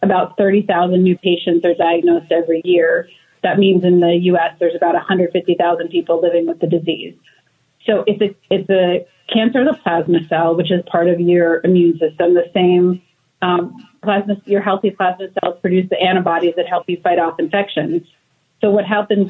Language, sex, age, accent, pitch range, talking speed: English, female, 30-49, American, 170-195 Hz, 185 wpm